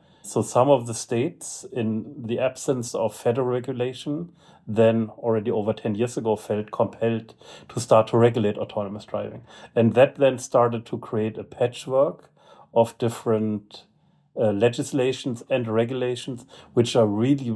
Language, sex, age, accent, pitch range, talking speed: English, male, 40-59, German, 110-125 Hz, 145 wpm